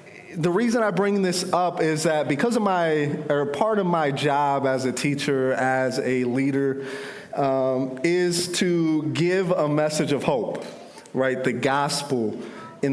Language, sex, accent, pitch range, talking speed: English, male, American, 140-180 Hz, 160 wpm